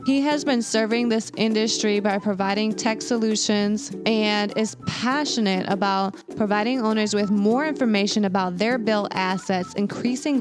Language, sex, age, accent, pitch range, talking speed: English, female, 20-39, American, 190-225 Hz, 140 wpm